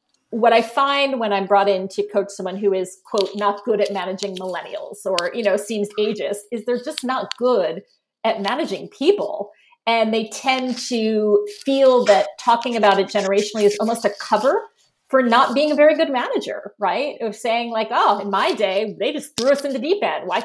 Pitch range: 200-265 Hz